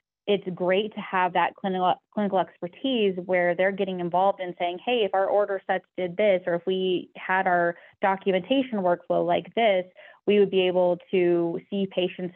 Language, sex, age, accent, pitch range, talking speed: English, female, 20-39, American, 175-190 Hz, 180 wpm